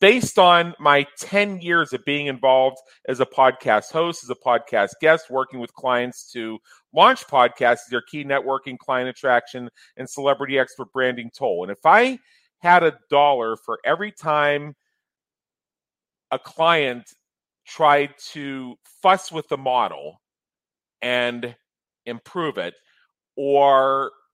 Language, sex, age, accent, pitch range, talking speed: English, male, 40-59, American, 125-155 Hz, 130 wpm